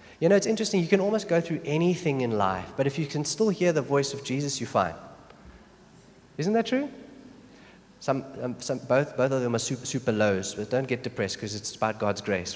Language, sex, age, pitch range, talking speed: English, male, 30-49, 105-135 Hz, 225 wpm